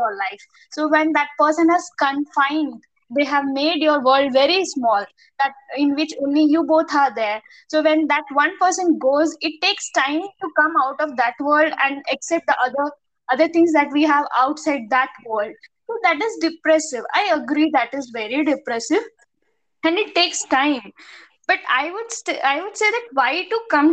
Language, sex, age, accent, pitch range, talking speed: Tamil, female, 20-39, native, 265-335 Hz, 185 wpm